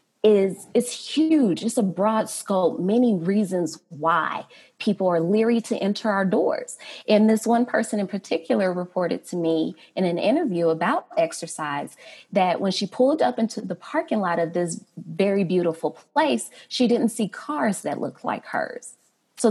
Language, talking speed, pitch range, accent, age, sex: English, 165 wpm, 170-225 Hz, American, 20-39, female